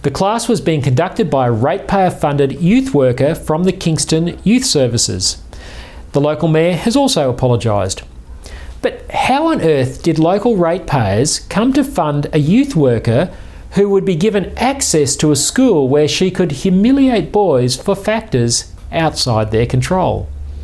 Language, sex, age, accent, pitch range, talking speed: English, male, 40-59, Australian, 125-195 Hz, 150 wpm